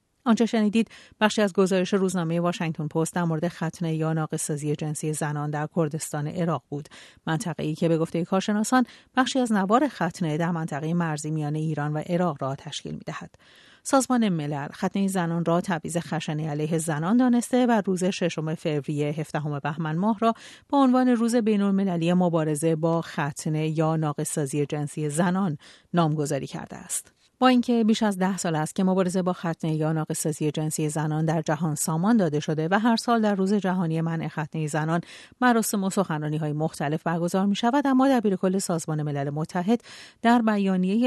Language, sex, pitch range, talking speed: Persian, female, 155-200 Hz, 170 wpm